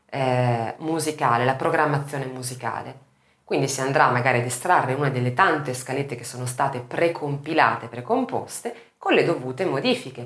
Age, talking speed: 30-49, 135 wpm